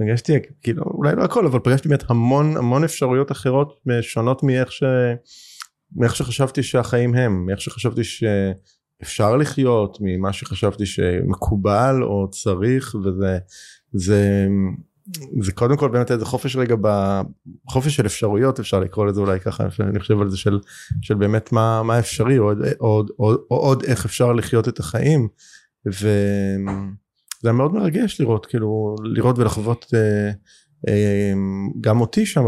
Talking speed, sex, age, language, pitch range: 145 wpm, male, 30-49, Hebrew, 105-130 Hz